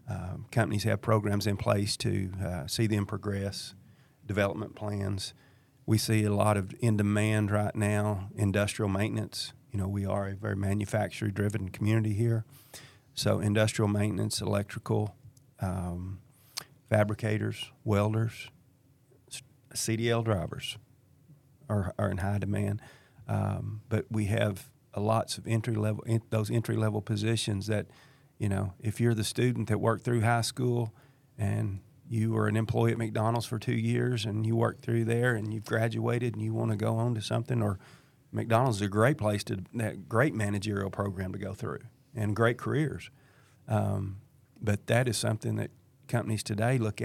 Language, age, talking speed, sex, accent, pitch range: English, 40-59, 160 wpm, male, American, 105-120 Hz